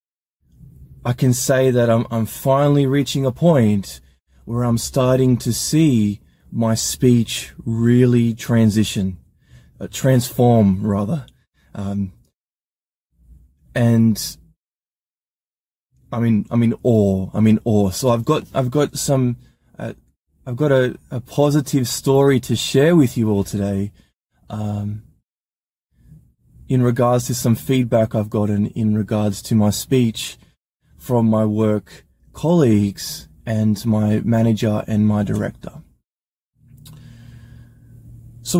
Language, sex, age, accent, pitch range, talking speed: English, male, 20-39, Australian, 105-130 Hz, 115 wpm